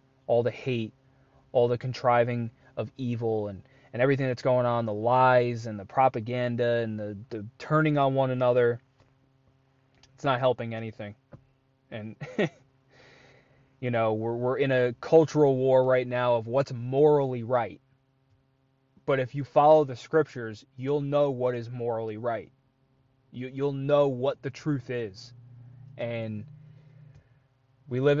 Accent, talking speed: American, 145 wpm